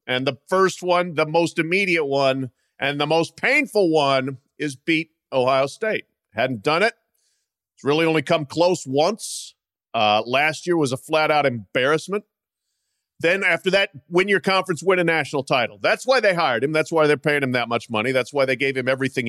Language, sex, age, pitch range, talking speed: English, male, 40-59, 130-185 Hz, 195 wpm